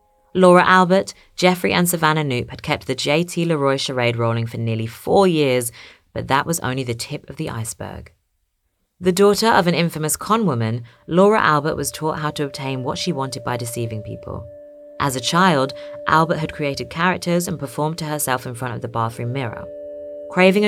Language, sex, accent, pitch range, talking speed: English, female, British, 115-160 Hz, 185 wpm